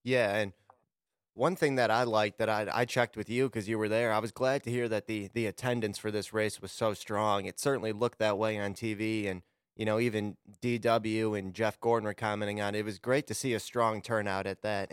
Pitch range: 105-125 Hz